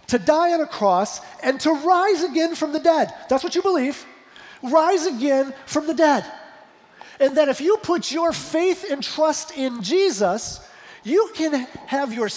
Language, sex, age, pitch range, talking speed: English, male, 40-59, 220-290 Hz, 175 wpm